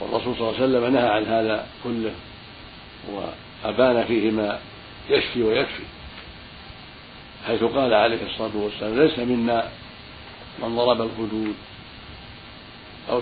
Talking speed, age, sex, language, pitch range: 115 wpm, 60-79, male, Arabic, 105-120 Hz